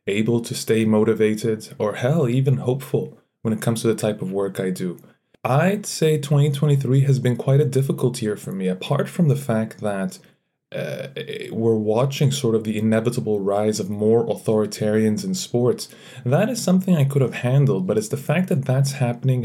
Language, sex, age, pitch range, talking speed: English, male, 20-39, 110-140 Hz, 190 wpm